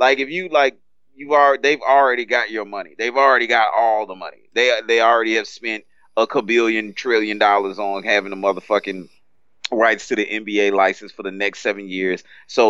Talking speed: 195 wpm